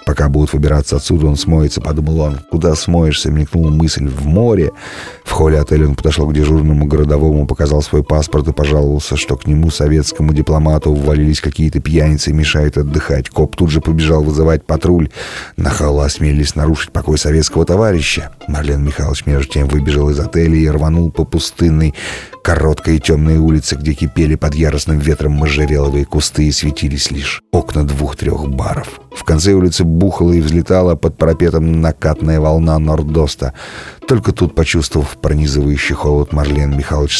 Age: 30-49